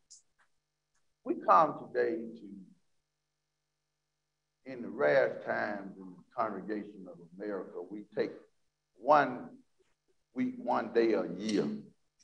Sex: male